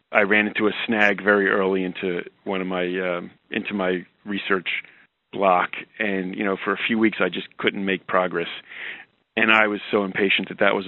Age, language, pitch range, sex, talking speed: 40-59, English, 90-110 Hz, male, 200 wpm